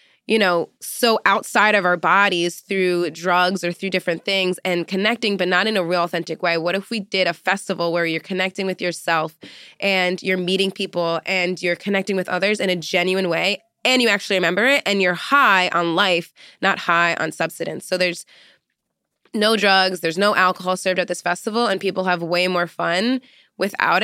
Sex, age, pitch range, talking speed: female, 20-39, 180-210 Hz, 195 wpm